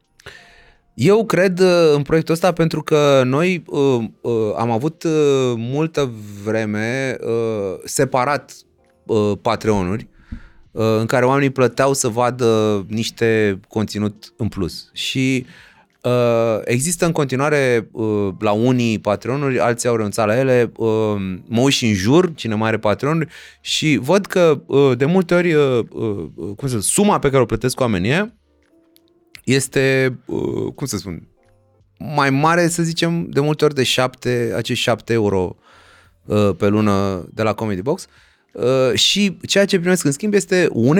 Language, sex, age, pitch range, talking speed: Romanian, male, 30-49, 115-165 Hz, 145 wpm